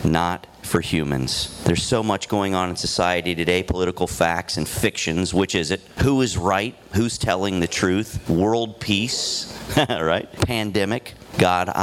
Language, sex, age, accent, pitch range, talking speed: English, male, 40-59, American, 85-105 Hz, 150 wpm